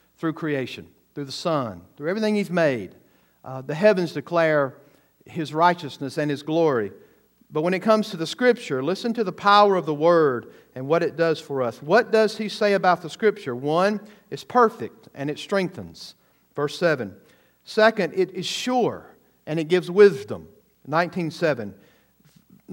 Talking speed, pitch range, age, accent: 165 wpm, 155-195 Hz, 50-69, American